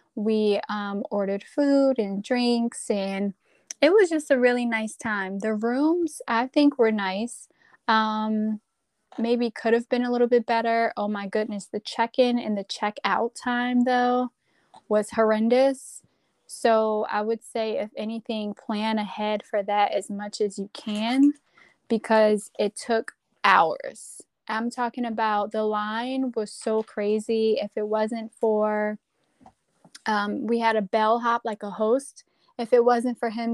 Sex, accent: female, American